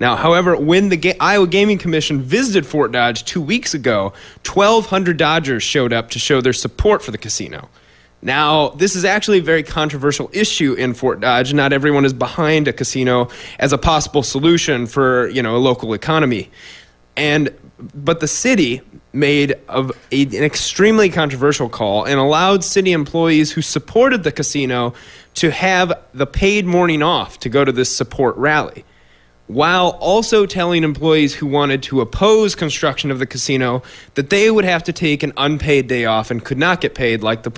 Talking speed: 175 wpm